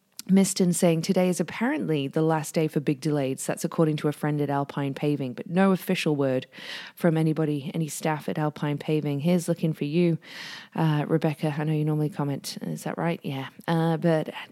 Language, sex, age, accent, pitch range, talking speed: English, female, 20-39, Australian, 150-185 Hz, 195 wpm